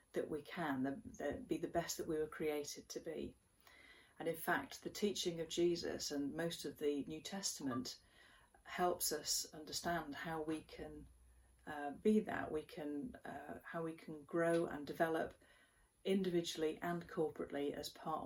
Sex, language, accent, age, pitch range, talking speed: female, English, British, 40-59, 150-185 Hz, 165 wpm